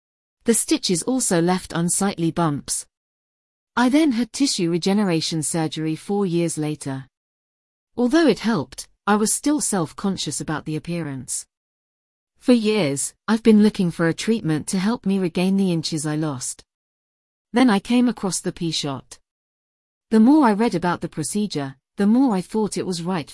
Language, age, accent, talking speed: English, 40-59, British, 155 wpm